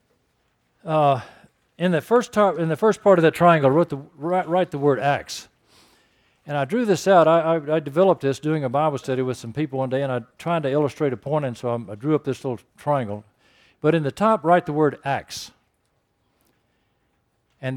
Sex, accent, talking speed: male, American, 215 wpm